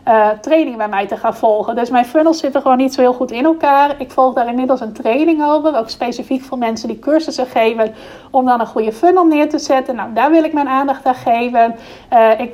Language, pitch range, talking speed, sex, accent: Dutch, 230-280 Hz, 240 wpm, female, Dutch